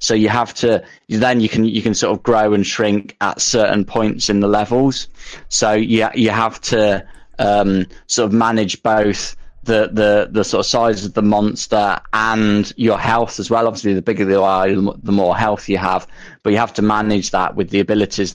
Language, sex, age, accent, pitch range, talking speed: English, male, 20-39, British, 100-115 Hz, 205 wpm